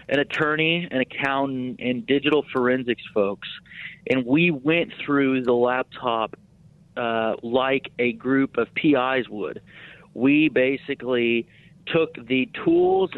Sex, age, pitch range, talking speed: male, 40-59, 125-155 Hz, 120 wpm